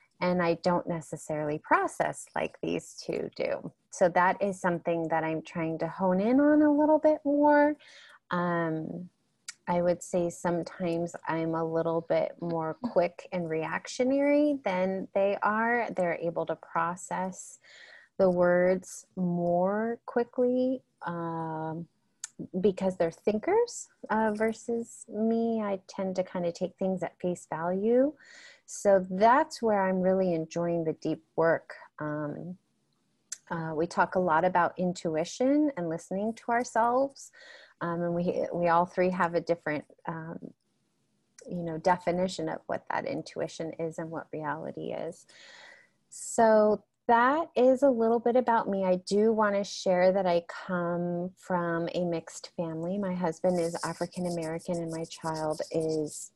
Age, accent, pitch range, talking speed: 30-49, American, 170-220 Hz, 145 wpm